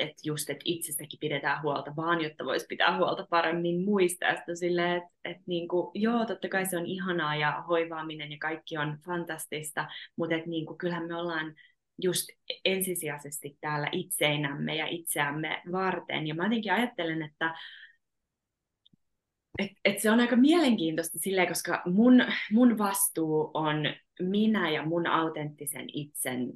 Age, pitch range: 20-39, 155-195 Hz